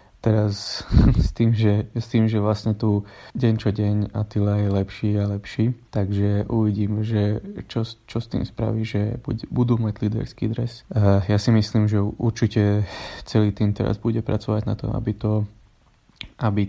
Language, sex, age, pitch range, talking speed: Slovak, male, 20-39, 100-115 Hz, 160 wpm